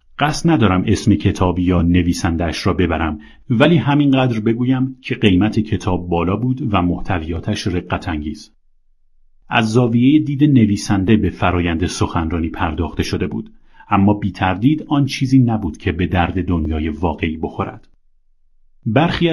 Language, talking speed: Persian, 125 wpm